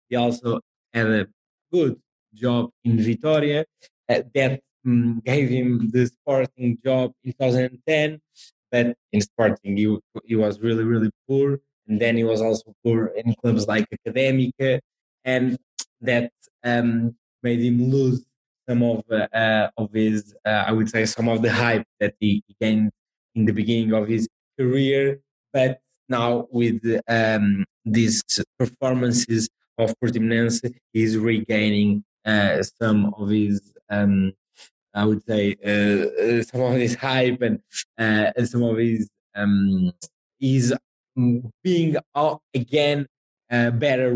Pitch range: 110-125 Hz